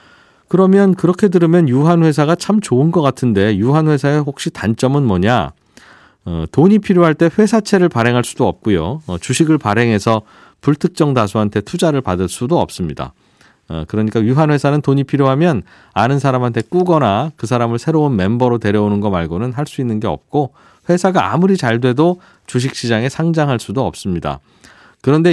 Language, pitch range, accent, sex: Korean, 110-155 Hz, native, male